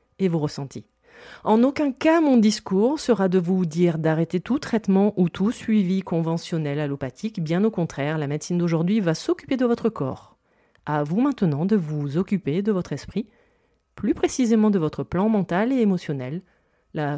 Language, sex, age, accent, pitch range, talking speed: French, female, 40-59, French, 160-220 Hz, 170 wpm